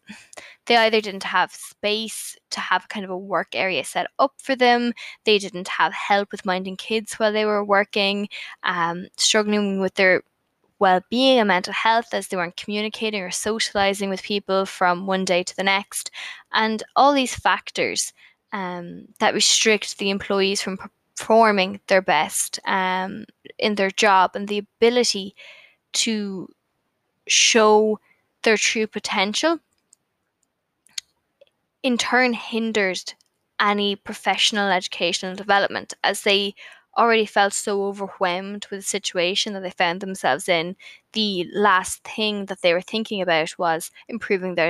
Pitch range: 185-220 Hz